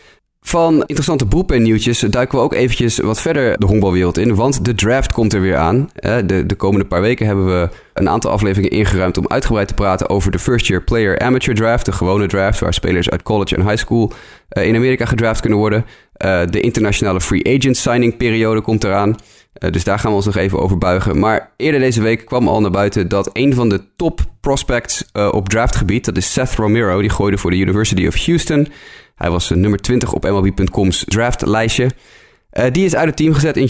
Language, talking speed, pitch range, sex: Dutch, 210 wpm, 100-130 Hz, male